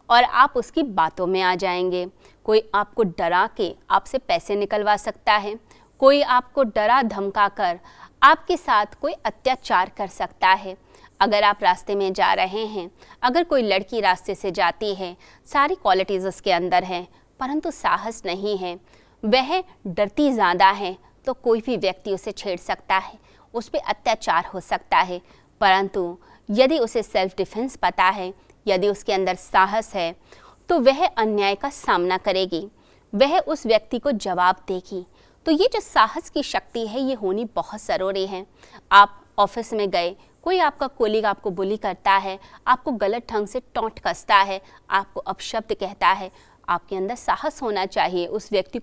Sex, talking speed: female, 165 wpm